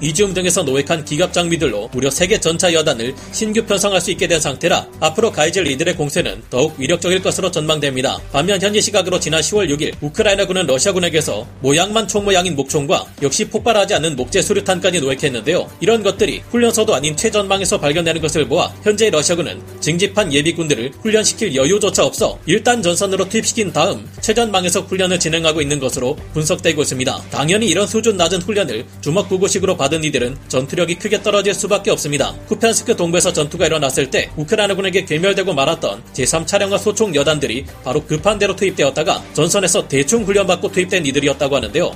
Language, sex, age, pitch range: Korean, male, 30-49, 150-200 Hz